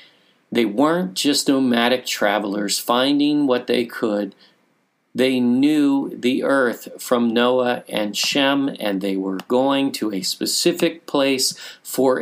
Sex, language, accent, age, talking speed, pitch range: male, English, American, 40-59, 130 wpm, 115-165 Hz